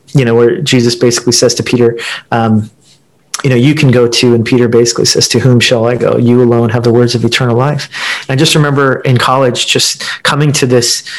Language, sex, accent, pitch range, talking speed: English, male, American, 120-145 Hz, 220 wpm